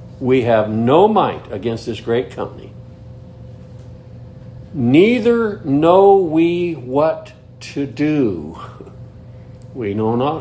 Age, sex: 60-79, male